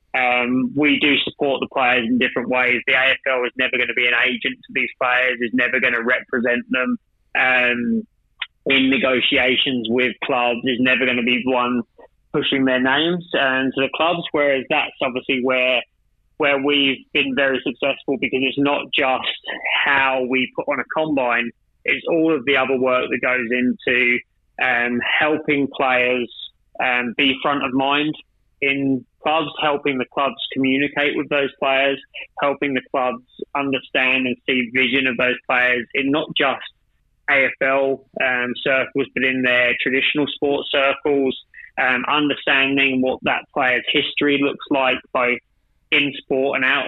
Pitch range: 125-140 Hz